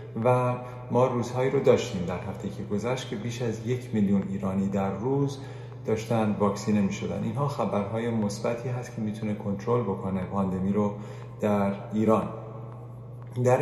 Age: 30-49